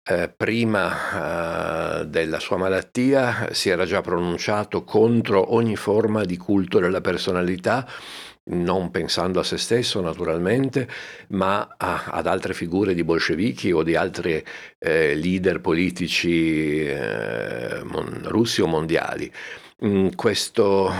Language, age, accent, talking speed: Italian, 50-69, native, 125 wpm